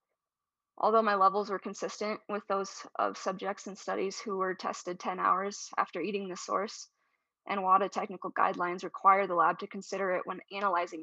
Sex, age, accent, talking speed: female, 20-39, American, 175 wpm